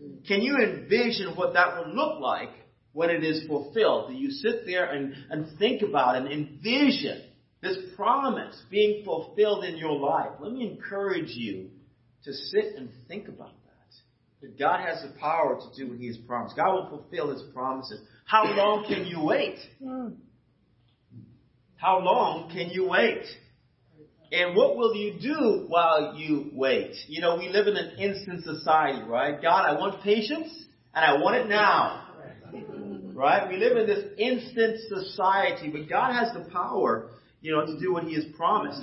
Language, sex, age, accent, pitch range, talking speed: English, male, 40-59, American, 140-210 Hz, 170 wpm